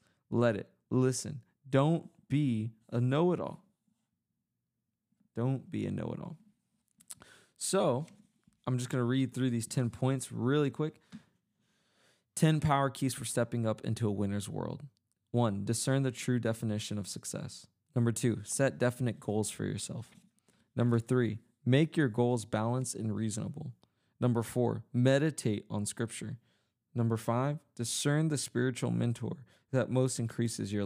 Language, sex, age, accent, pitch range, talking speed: English, male, 20-39, American, 115-135 Hz, 145 wpm